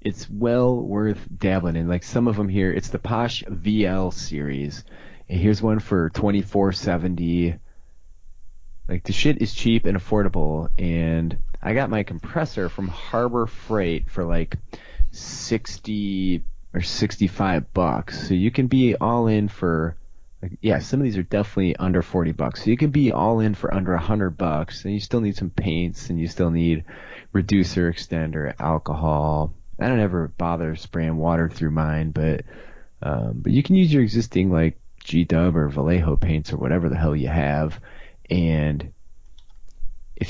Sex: male